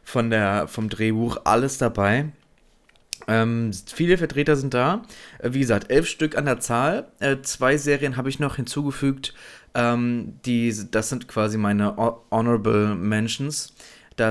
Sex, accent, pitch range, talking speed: male, German, 105-135 Hz, 130 wpm